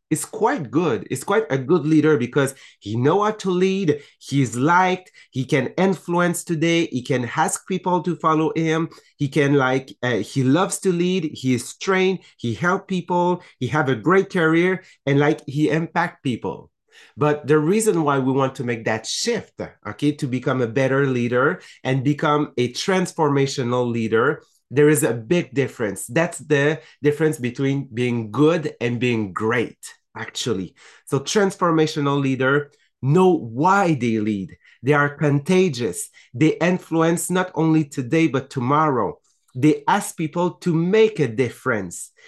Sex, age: male, 30-49